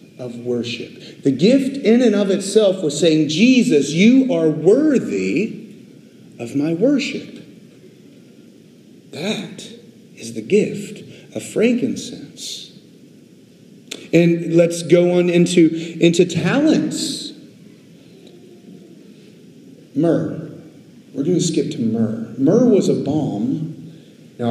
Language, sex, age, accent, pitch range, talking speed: English, male, 40-59, American, 140-215 Hz, 105 wpm